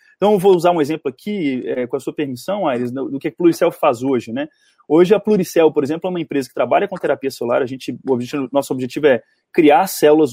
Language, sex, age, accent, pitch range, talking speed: Portuguese, male, 20-39, Brazilian, 150-230 Hz, 240 wpm